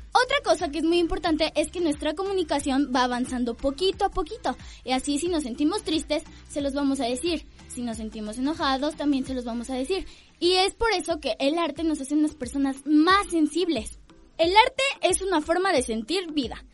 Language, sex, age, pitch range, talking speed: Spanish, female, 10-29, 270-350 Hz, 205 wpm